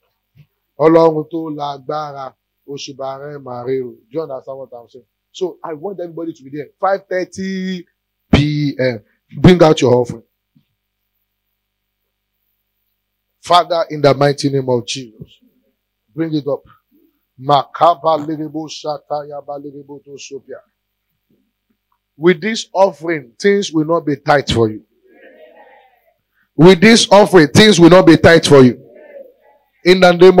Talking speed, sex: 90 wpm, male